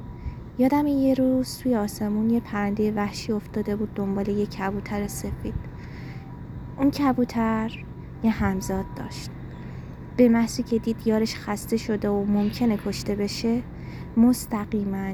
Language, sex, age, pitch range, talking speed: Persian, female, 20-39, 205-265 Hz, 125 wpm